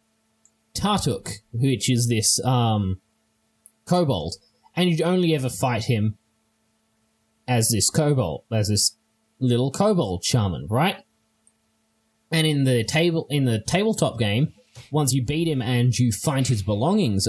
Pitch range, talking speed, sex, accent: 110-130 Hz, 130 wpm, male, Australian